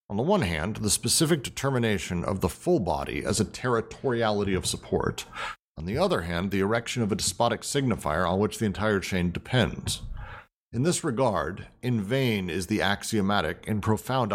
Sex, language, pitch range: male, English, 100-120 Hz